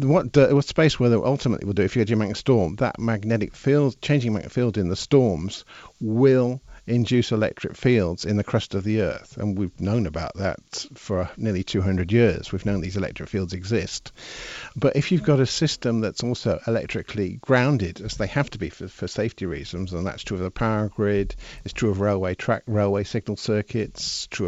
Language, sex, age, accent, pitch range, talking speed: English, male, 50-69, British, 95-120 Hz, 205 wpm